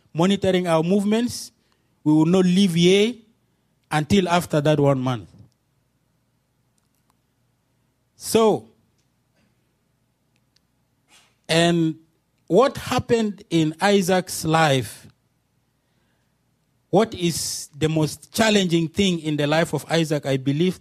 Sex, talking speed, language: male, 95 wpm, English